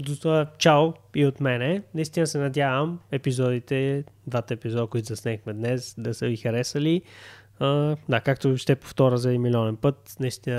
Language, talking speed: Bulgarian, 165 wpm